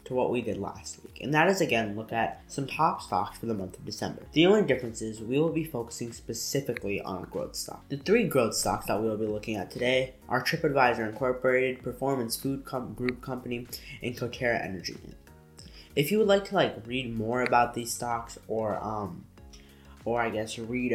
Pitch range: 110-130 Hz